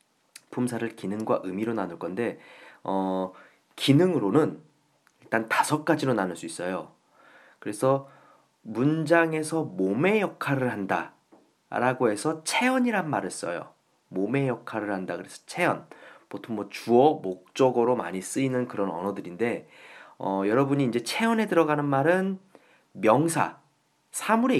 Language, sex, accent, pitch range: Korean, male, native, 110-185 Hz